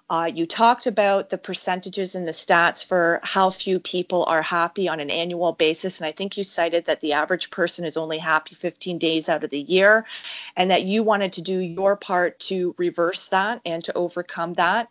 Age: 30-49